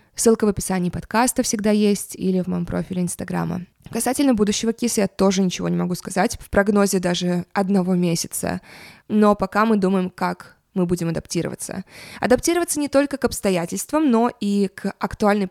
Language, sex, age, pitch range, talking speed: Russian, female, 20-39, 180-215 Hz, 165 wpm